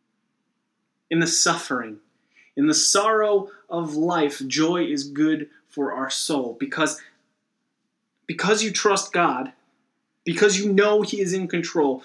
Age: 30-49